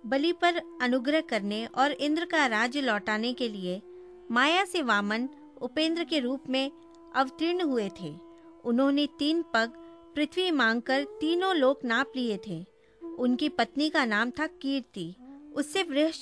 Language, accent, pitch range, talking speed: Hindi, native, 240-325 Hz, 140 wpm